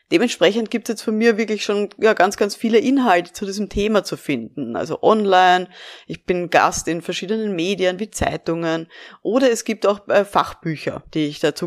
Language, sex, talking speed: German, female, 190 wpm